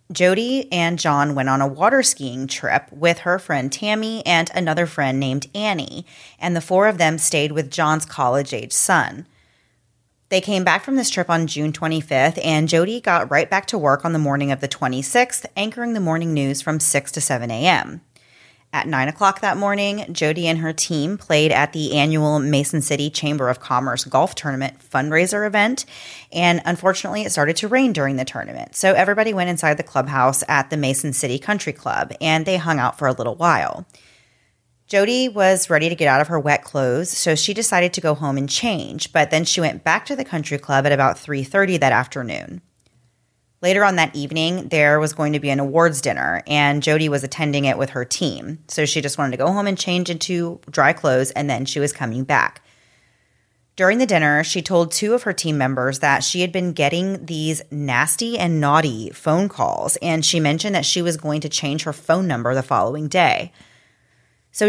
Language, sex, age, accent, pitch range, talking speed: English, female, 30-49, American, 140-180 Hz, 200 wpm